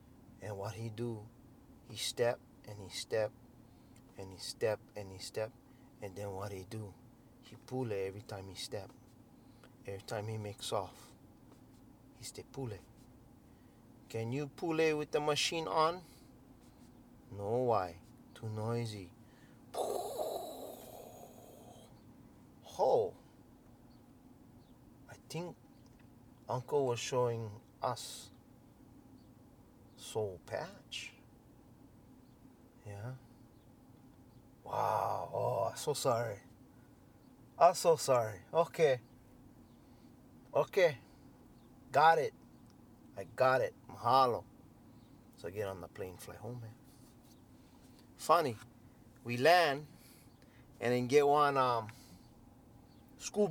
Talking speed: 105 wpm